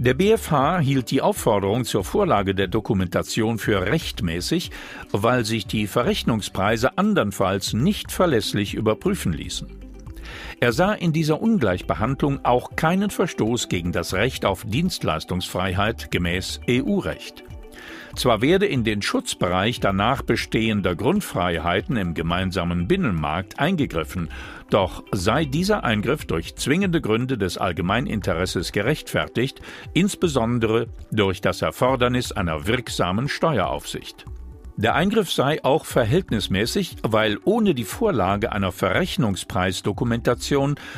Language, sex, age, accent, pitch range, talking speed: German, male, 50-69, German, 95-140 Hz, 110 wpm